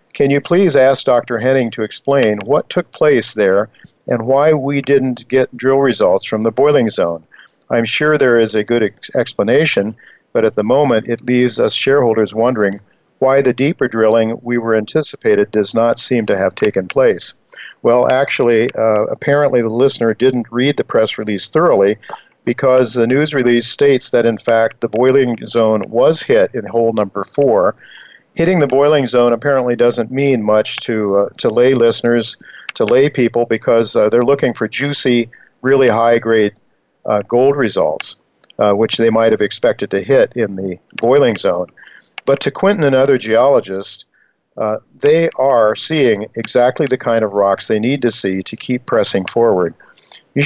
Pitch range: 110-135 Hz